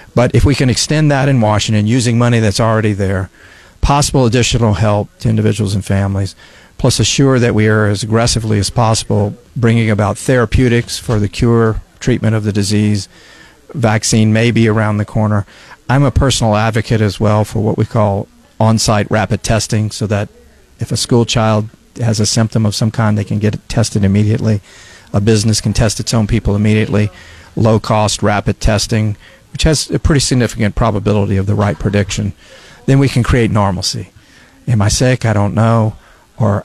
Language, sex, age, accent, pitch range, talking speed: English, male, 40-59, American, 105-115 Hz, 175 wpm